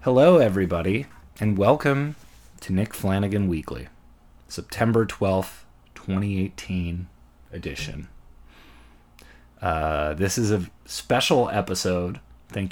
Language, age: English, 30-49